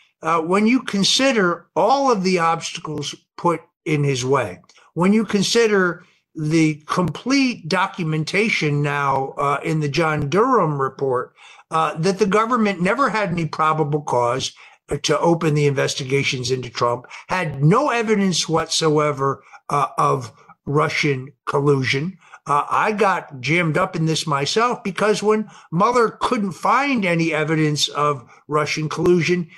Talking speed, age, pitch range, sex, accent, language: 135 wpm, 50-69, 150-190 Hz, male, American, English